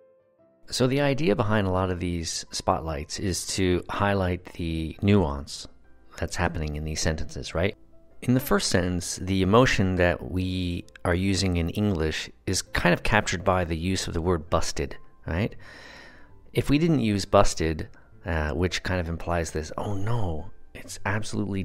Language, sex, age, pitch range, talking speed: English, male, 40-59, 85-105 Hz, 165 wpm